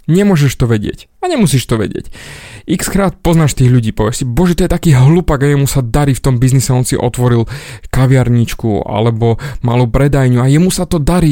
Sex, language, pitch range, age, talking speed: male, Slovak, 120-155 Hz, 20-39, 200 wpm